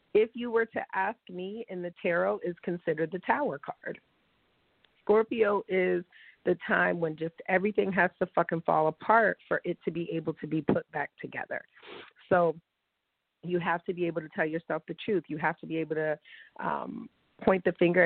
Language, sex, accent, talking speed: English, female, American, 190 wpm